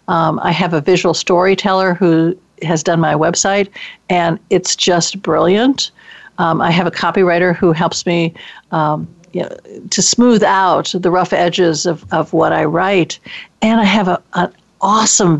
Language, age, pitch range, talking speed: English, 60-79, 170-205 Hz, 170 wpm